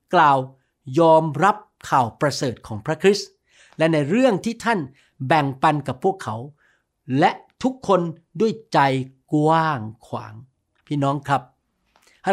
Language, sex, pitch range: Thai, male, 135-170 Hz